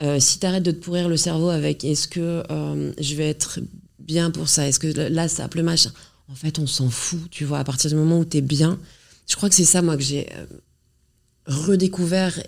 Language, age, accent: French, 30-49, French